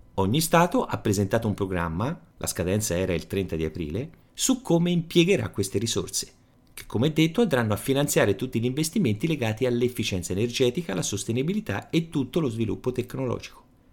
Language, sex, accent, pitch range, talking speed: Italian, male, native, 95-145 Hz, 160 wpm